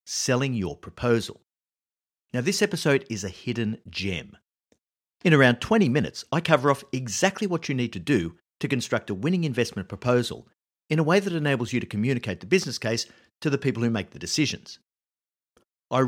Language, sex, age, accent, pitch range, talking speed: English, male, 50-69, Australian, 100-155 Hz, 180 wpm